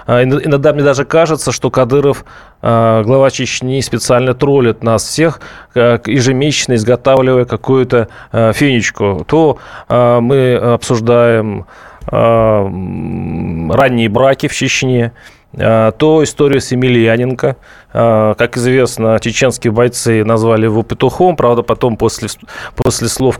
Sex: male